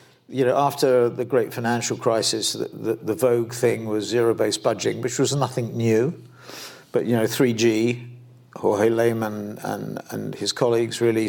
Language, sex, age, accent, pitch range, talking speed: English, male, 50-69, British, 115-130 Hz, 165 wpm